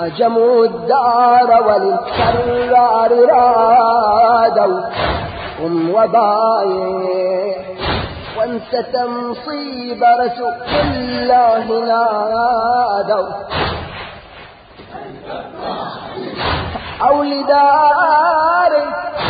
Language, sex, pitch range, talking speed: Arabic, male, 230-300 Hz, 40 wpm